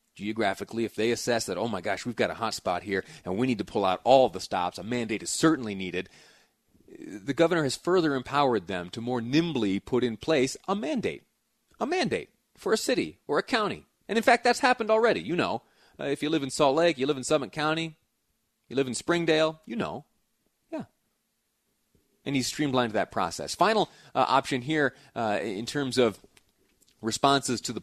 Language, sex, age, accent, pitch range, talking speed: English, male, 30-49, American, 115-160 Hz, 200 wpm